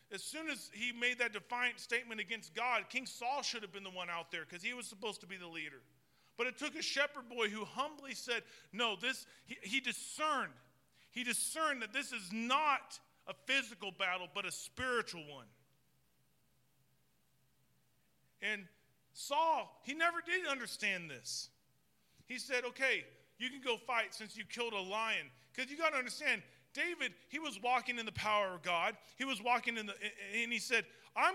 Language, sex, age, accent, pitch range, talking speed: English, male, 40-59, American, 205-255 Hz, 185 wpm